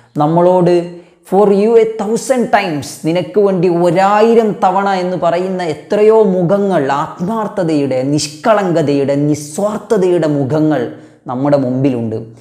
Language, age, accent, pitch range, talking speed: Malayalam, 20-39, native, 120-155 Hz, 95 wpm